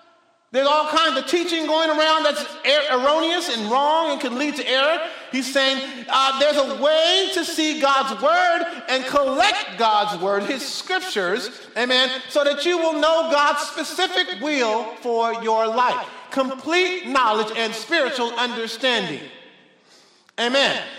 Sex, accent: male, American